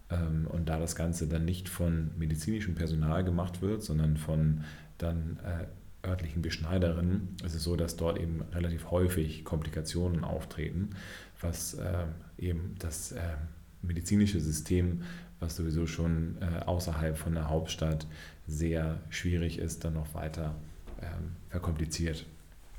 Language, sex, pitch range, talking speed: German, male, 80-90 Hz, 120 wpm